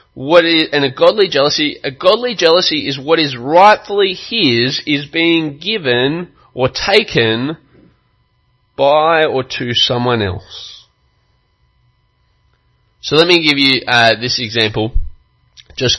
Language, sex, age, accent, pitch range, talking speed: English, male, 20-39, Australian, 125-185 Hz, 125 wpm